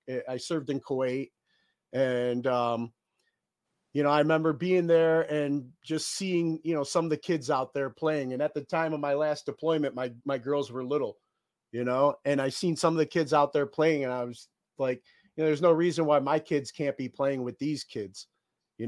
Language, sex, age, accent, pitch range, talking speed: English, male, 30-49, American, 135-160 Hz, 215 wpm